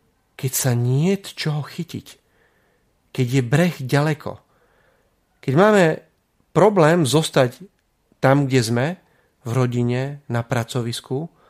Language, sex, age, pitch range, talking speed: Slovak, male, 40-59, 125-180 Hz, 105 wpm